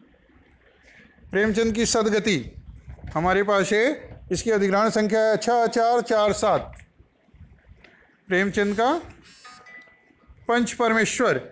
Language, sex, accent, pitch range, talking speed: Hindi, male, native, 195-235 Hz, 95 wpm